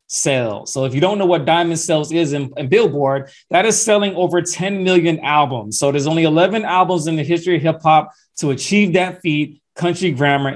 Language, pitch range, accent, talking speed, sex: English, 155-195 Hz, American, 210 wpm, male